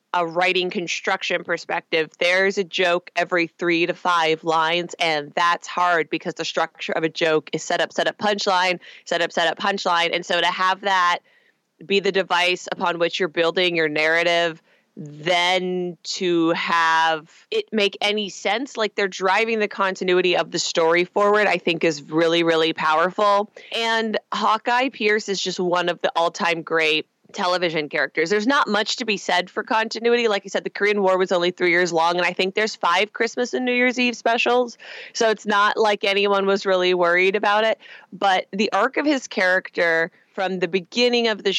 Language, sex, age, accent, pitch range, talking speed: English, female, 20-39, American, 170-200 Hz, 190 wpm